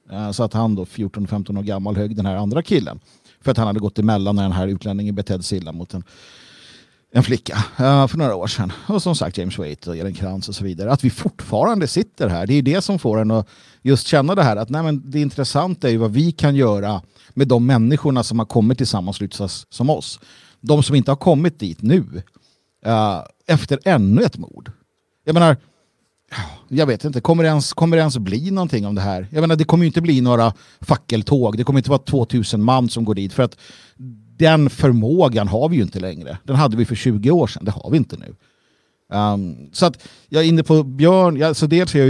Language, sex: Swedish, male